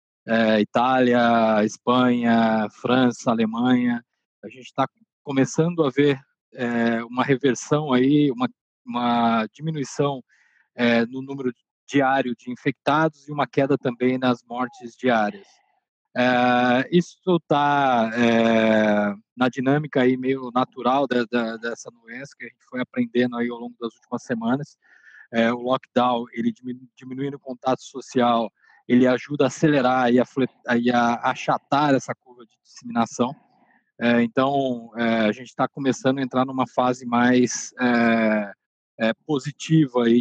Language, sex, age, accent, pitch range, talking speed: Portuguese, male, 20-39, Brazilian, 120-140 Hz, 140 wpm